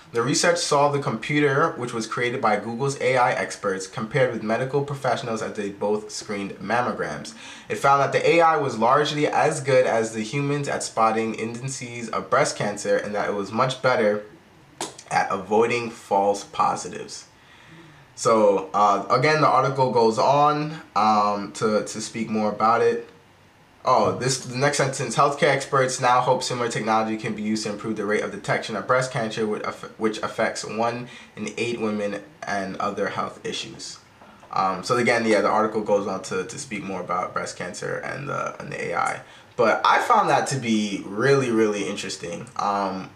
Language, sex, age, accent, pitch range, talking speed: English, male, 20-39, American, 110-140 Hz, 175 wpm